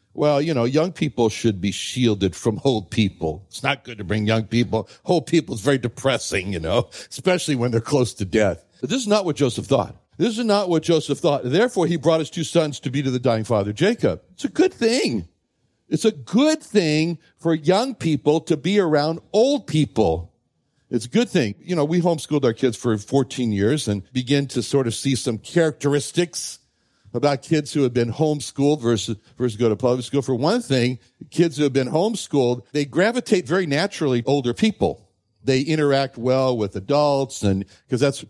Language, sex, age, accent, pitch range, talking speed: English, male, 60-79, American, 115-160 Hz, 200 wpm